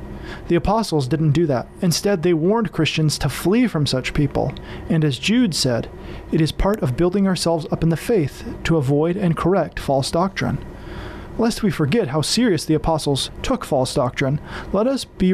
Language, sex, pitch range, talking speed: English, male, 145-185 Hz, 185 wpm